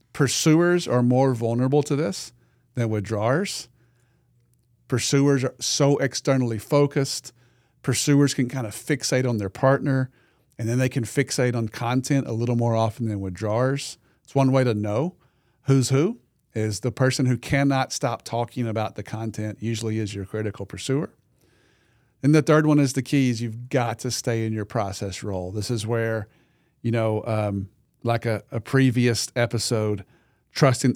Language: English